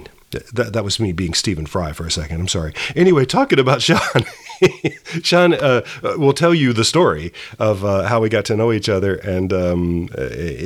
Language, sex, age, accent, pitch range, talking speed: English, male, 40-59, American, 90-120 Hz, 195 wpm